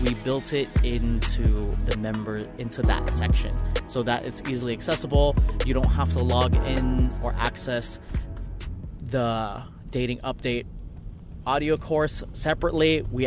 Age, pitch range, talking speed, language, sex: 20-39, 115-145 Hz, 130 wpm, English, male